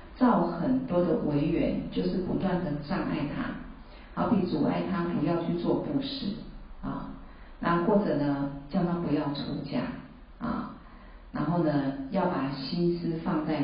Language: Chinese